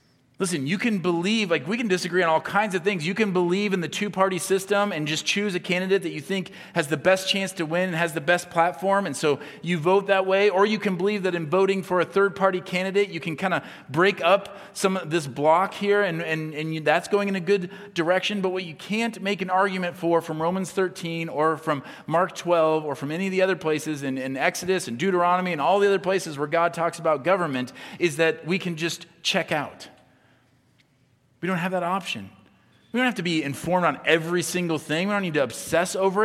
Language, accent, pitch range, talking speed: English, American, 140-190 Hz, 235 wpm